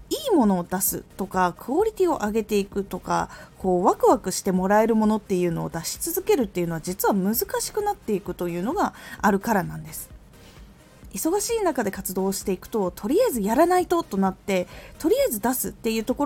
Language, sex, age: Japanese, female, 20-39